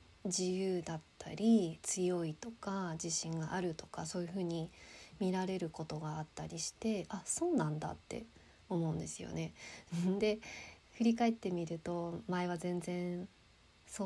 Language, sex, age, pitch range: Japanese, female, 20-39, 160-200 Hz